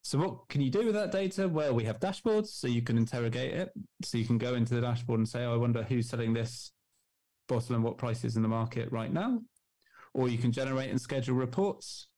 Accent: British